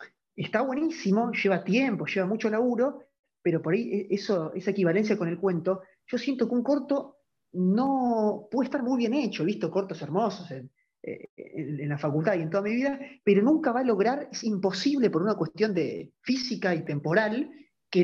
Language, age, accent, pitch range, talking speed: Spanish, 30-49, Argentinian, 170-245 Hz, 185 wpm